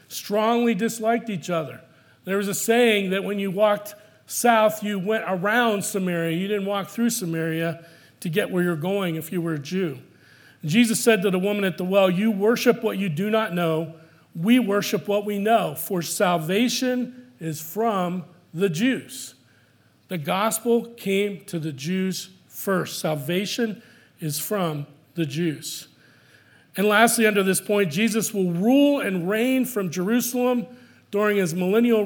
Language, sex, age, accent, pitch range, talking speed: English, male, 40-59, American, 170-215 Hz, 160 wpm